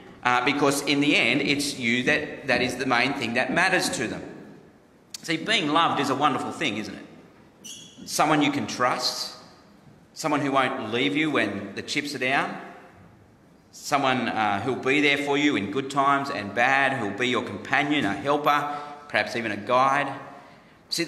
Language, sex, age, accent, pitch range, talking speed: English, male, 40-59, Australian, 125-150 Hz, 180 wpm